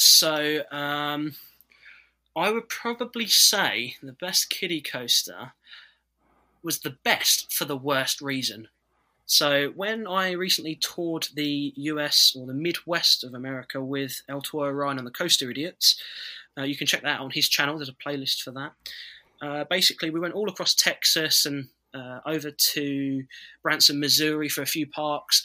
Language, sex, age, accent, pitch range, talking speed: English, male, 20-39, British, 140-175 Hz, 160 wpm